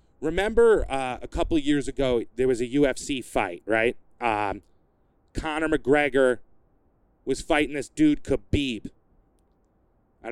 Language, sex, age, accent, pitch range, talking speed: English, male, 30-49, American, 120-155 Hz, 130 wpm